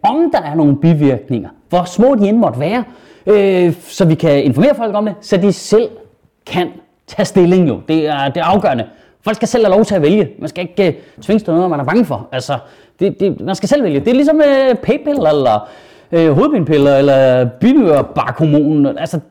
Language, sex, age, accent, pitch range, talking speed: Danish, male, 30-49, native, 165-240 Hz, 210 wpm